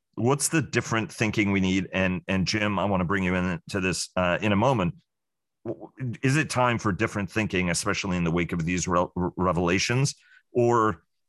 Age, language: 40-59, English